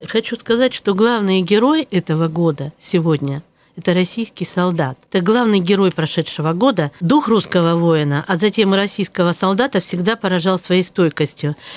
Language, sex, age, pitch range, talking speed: Russian, female, 50-69, 180-230 Hz, 145 wpm